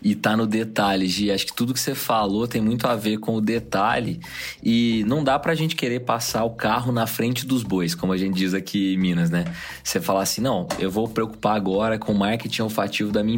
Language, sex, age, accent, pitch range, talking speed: Portuguese, male, 20-39, Brazilian, 100-130 Hz, 240 wpm